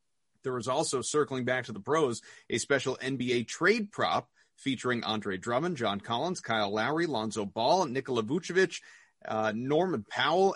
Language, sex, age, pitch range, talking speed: English, male, 30-49, 110-165 Hz, 155 wpm